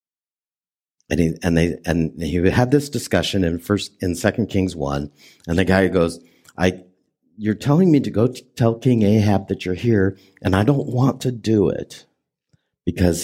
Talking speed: 175 wpm